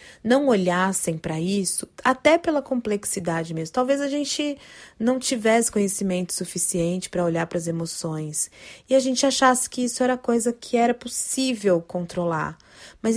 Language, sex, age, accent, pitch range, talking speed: Portuguese, female, 20-39, Brazilian, 185-255 Hz, 150 wpm